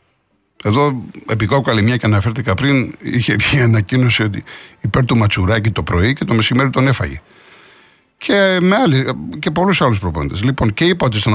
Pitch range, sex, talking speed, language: 110-160 Hz, male, 160 wpm, Greek